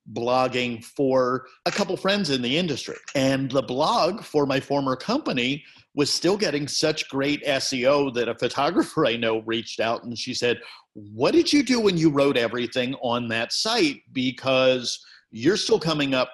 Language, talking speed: English, 175 wpm